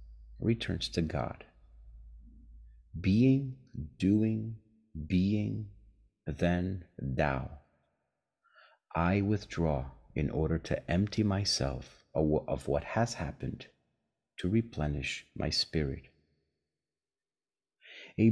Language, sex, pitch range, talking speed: English, male, 80-110 Hz, 80 wpm